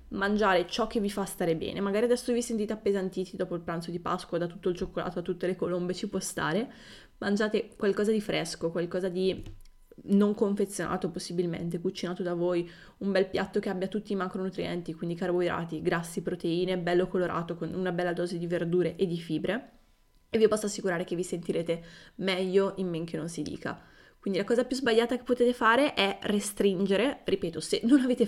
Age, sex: 20-39, female